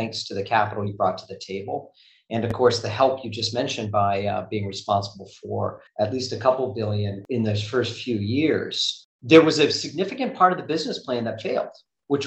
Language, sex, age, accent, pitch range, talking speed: English, male, 40-59, American, 105-130 Hz, 215 wpm